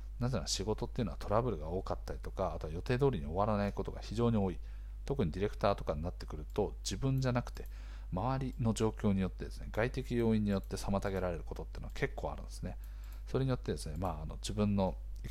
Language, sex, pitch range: Japanese, male, 80-115 Hz